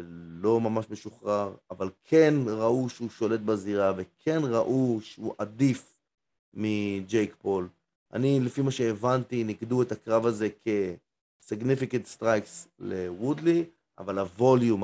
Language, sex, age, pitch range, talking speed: Hebrew, male, 30-49, 100-130 Hz, 115 wpm